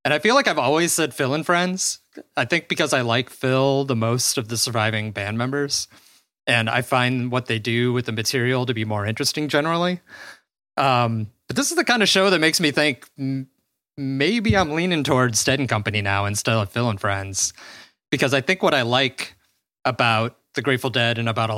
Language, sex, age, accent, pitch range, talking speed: English, male, 30-49, American, 115-145 Hz, 210 wpm